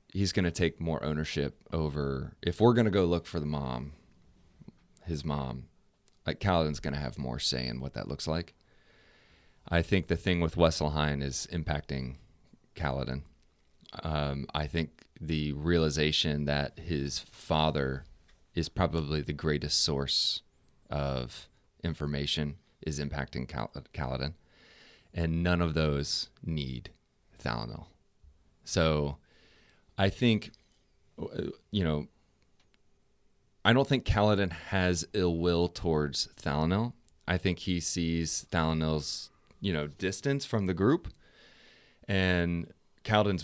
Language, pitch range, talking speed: English, 75-95 Hz, 125 wpm